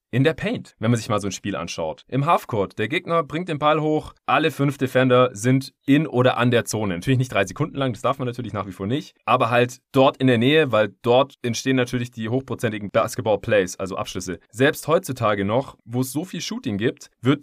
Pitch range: 100-130 Hz